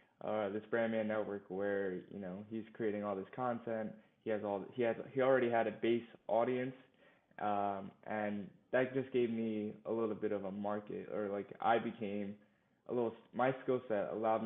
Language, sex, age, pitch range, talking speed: English, male, 20-39, 105-120 Hz, 190 wpm